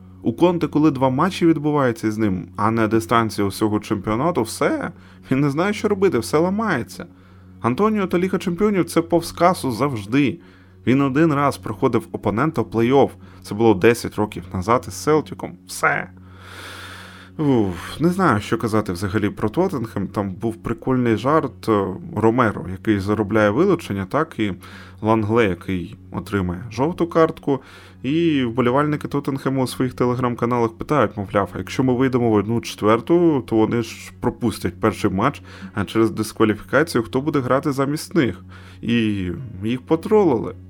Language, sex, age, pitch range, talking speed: Ukrainian, male, 20-39, 95-135 Hz, 145 wpm